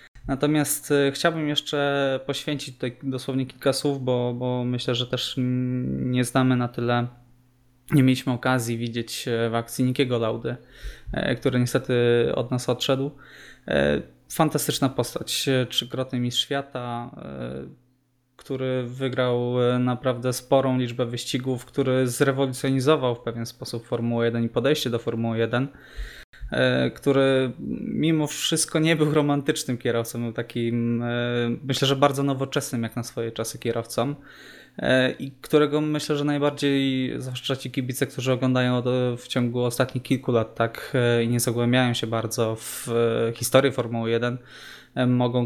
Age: 20-39